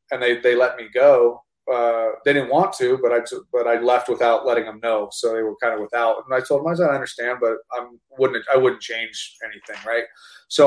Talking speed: 235 wpm